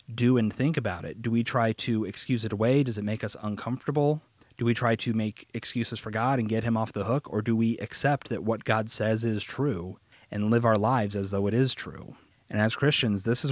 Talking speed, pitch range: 245 wpm, 110-130 Hz